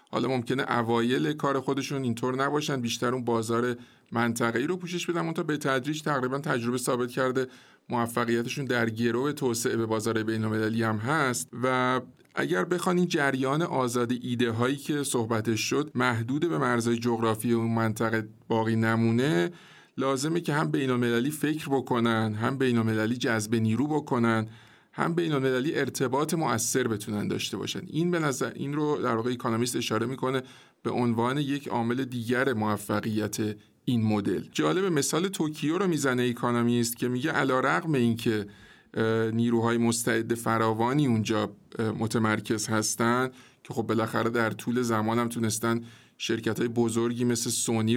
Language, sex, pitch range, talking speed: Persian, male, 115-135 Hz, 145 wpm